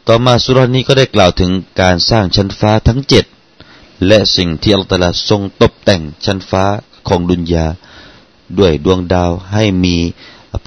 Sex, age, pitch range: male, 30-49, 85-110 Hz